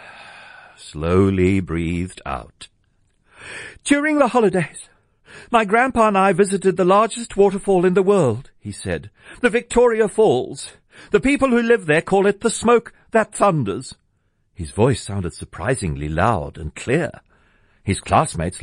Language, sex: English, male